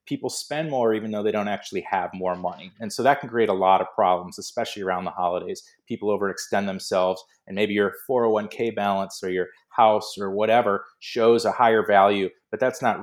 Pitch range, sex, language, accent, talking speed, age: 95-120 Hz, male, English, American, 205 wpm, 30-49